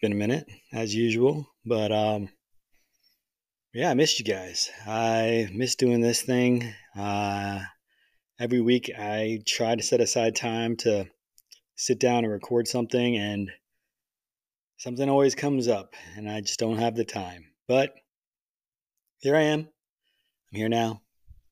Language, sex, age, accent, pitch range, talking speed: English, male, 20-39, American, 105-125 Hz, 140 wpm